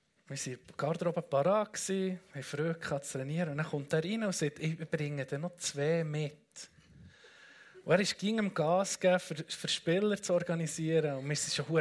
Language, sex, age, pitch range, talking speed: German, male, 20-39, 150-190 Hz, 185 wpm